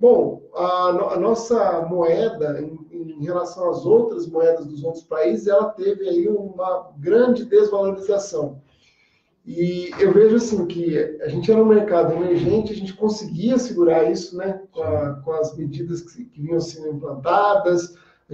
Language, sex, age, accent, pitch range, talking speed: Portuguese, male, 40-59, Brazilian, 165-210 Hz, 160 wpm